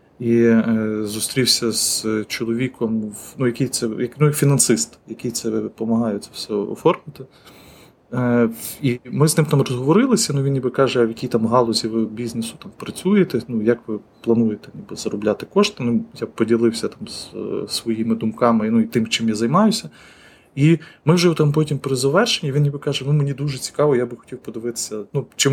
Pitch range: 115-140 Hz